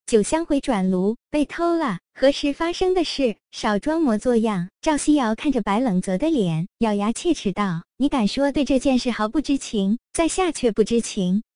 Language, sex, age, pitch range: Chinese, male, 20-39, 215-310 Hz